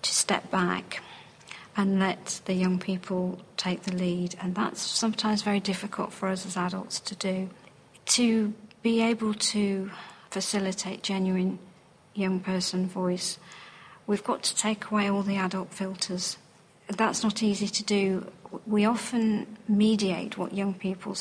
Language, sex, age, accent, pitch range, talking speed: English, female, 40-59, British, 185-205 Hz, 145 wpm